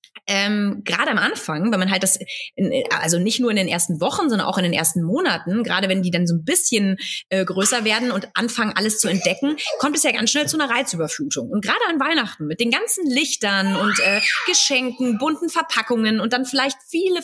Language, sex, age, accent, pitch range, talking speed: German, female, 30-49, German, 200-265 Hz, 215 wpm